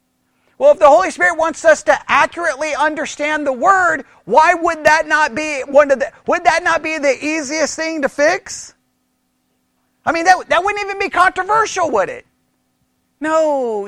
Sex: male